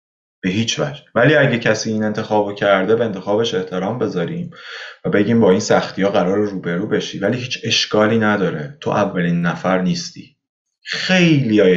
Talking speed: 150 wpm